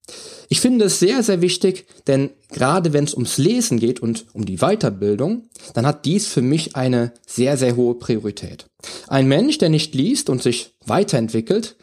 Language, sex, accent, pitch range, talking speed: German, male, German, 115-175 Hz, 180 wpm